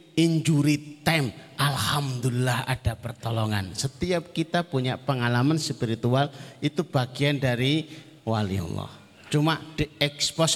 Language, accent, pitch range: Indonesian, native, 115-150 Hz